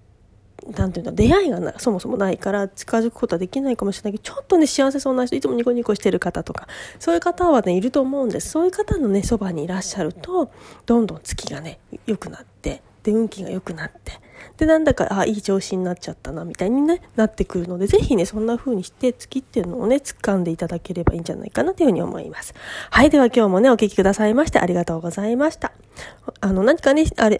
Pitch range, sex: 190-270 Hz, female